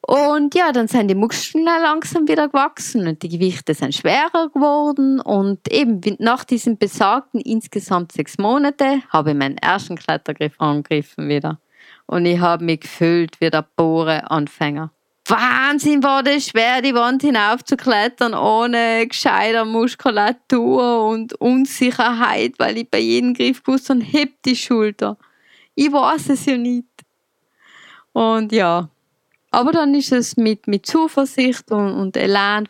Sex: female